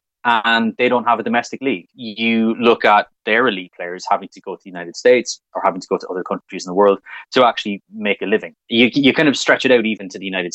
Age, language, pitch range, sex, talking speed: 20-39, English, 95-120 Hz, male, 260 wpm